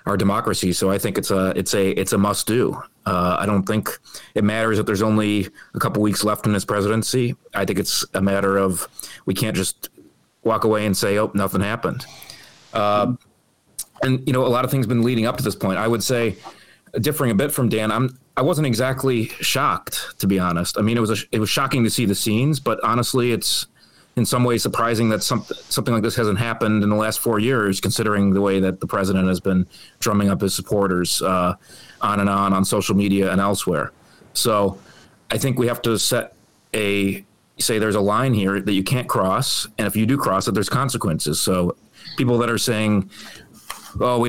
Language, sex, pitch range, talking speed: English, male, 100-120 Hz, 215 wpm